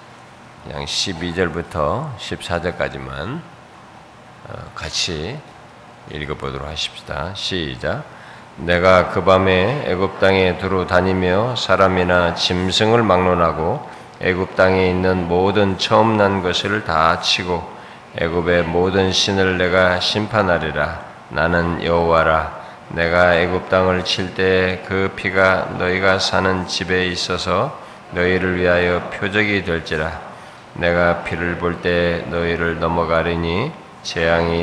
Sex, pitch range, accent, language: male, 80-95 Hz, native, Korean